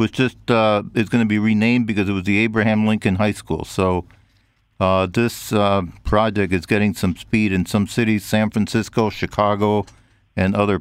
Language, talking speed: English, 180 wpm